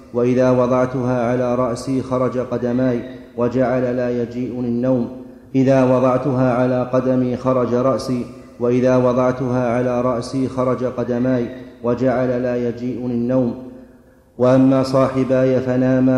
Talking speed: 110 wpm